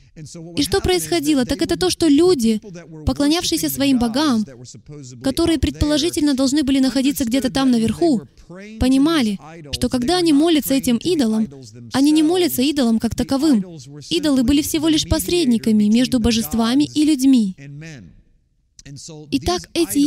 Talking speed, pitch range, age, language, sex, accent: 130 wpm, 210-305 Hz, 20-39, Russian, female, native